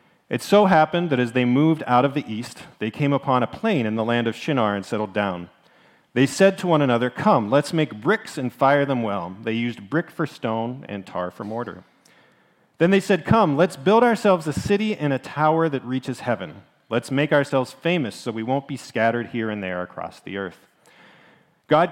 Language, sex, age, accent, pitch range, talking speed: English, male, 40-59, American, 115-160 Hz, 210 wpm